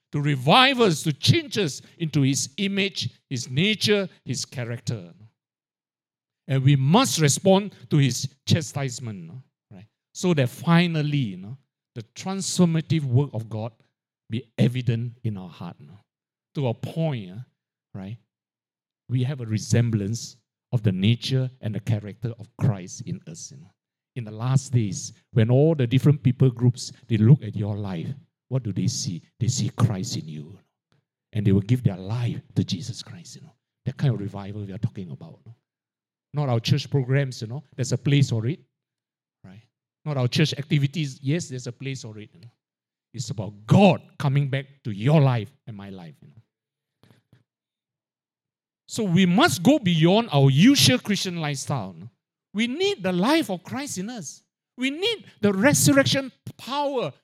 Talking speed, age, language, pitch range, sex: 175 wpm, 60-79, English, 120-160 Hz, male